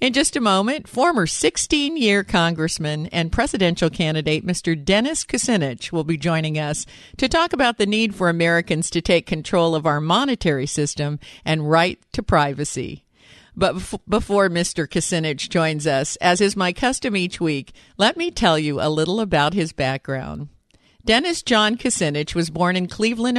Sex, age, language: female, 50-69, English